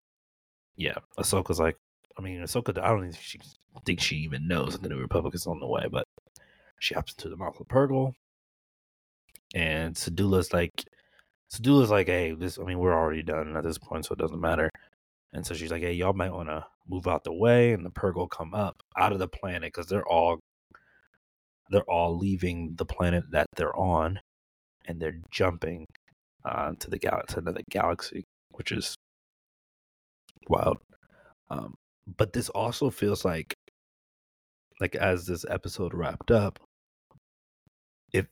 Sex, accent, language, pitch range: male, American, English, 85-105 Hz